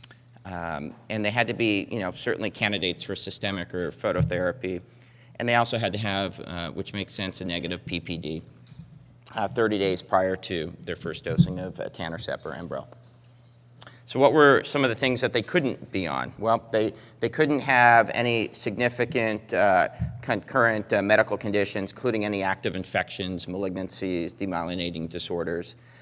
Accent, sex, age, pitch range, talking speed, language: American, male, 30-49, 95-115 Hz, 165 wpm, English